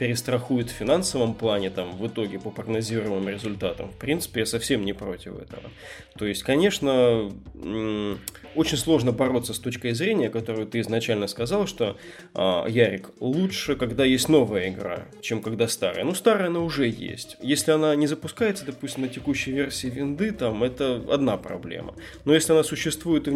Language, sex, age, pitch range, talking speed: Russian, male, 20-39, 110-145 Hz, 165 wpm